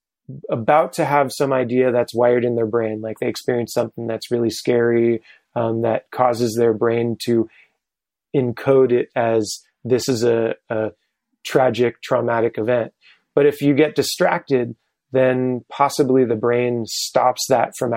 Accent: American